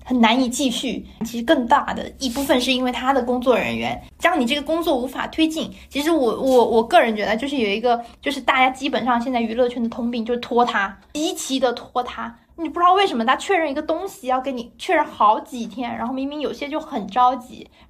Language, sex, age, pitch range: Chinese, female, 20-39, 235-290 Hz